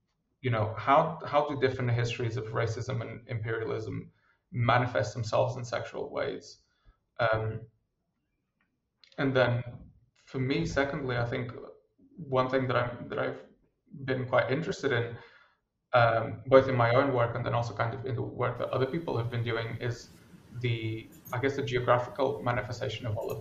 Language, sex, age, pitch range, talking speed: English, male, 20-39, 115-130 Hz, 160 wpm